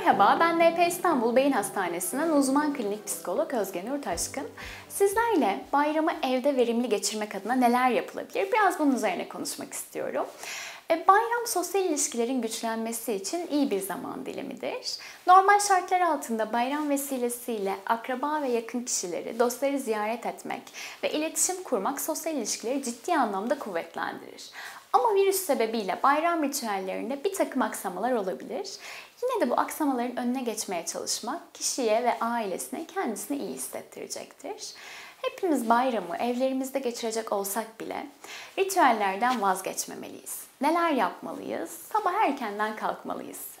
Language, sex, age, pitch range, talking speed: Turkish, female, 10-29, 225-330 Hz, 120 wpm